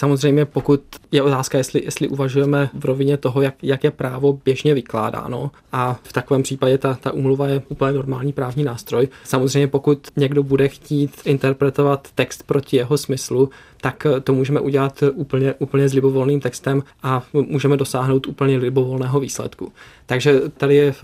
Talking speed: 160 wpm